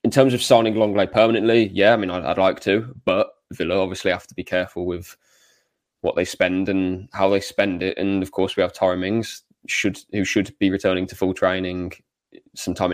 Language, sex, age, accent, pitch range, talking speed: English, male, 20-39, British, 90-100 Hz, 205 wpm